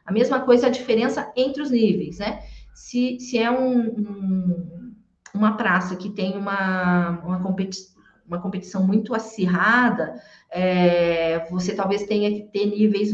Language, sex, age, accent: Portuguese, female, 40-59, Brazilian